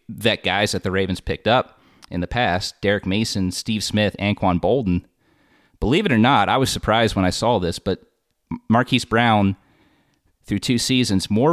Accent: American